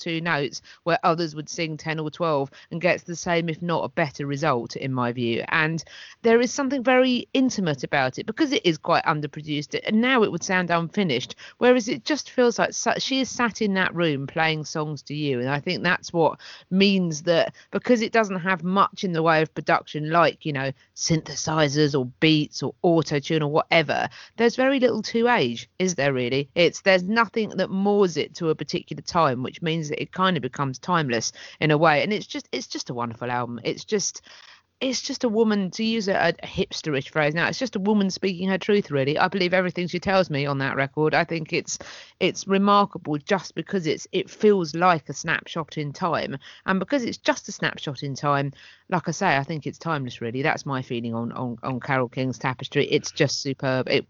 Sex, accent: female, British